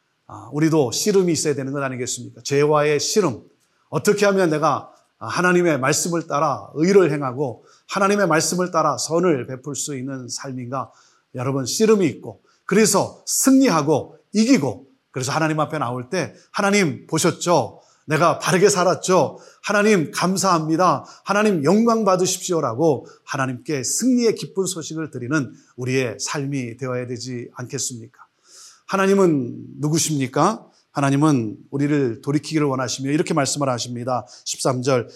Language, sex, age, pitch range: Korean, male, 30-49, 130-170 Hz